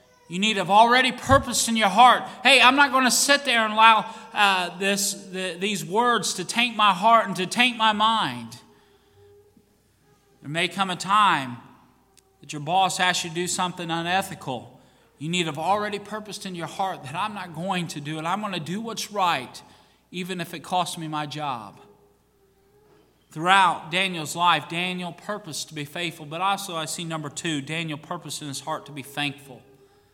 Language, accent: English, American